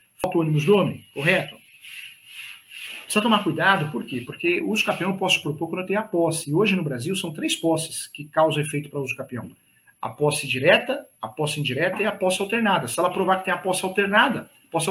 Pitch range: 150-190 Hz